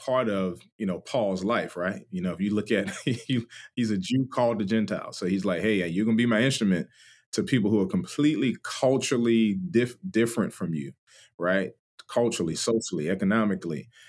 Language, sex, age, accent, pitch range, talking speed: English, male, 30-49, American, 95-120 Hz, 185 wpm